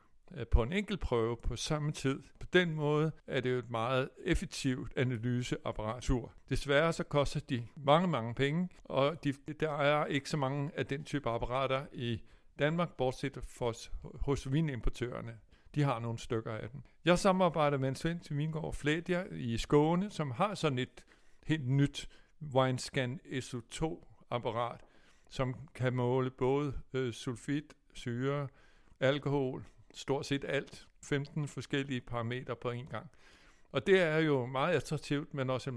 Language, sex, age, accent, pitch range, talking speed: Danish, male, 60-79, native, 120-145 Hz, 150 wpm